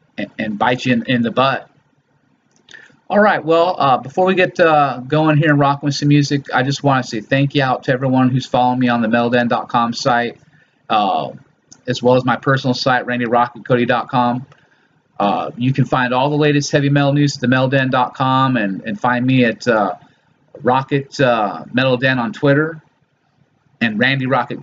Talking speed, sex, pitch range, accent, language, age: 175 wpm, male, 125-140 Hz, American, English, 30-49